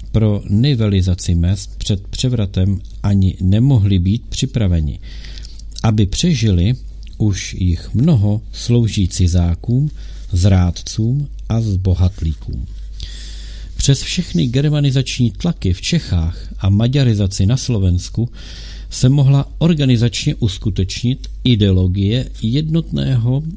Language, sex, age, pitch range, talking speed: Czech, male, 50-69, 90-120 Hz, 90 wpm